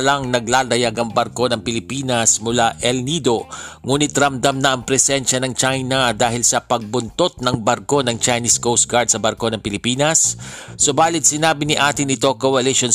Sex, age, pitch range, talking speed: male, 50-69, 120-135 Hz, 160 wpm